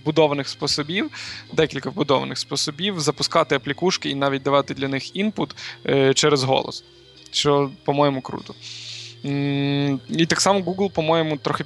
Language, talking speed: Ukrainian, 125 wpm